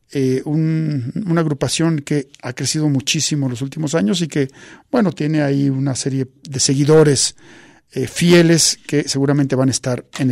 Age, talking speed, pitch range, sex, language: 50-69, 170 wpm, 140-195 Hz, male, Spanish